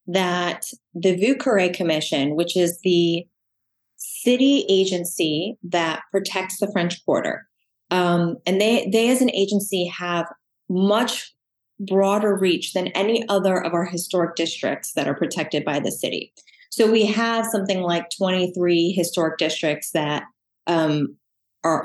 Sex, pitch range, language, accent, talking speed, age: female, 165-195 Hz, English, American, 130 wpm, 30-49